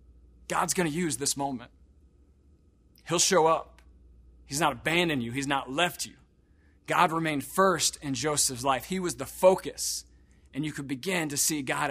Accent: American